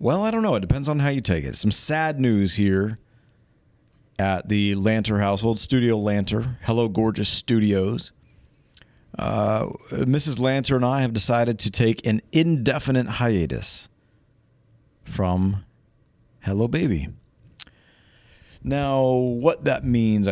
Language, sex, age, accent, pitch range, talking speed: English, male, 40-59, American, 105-130 Hz, 125 wpm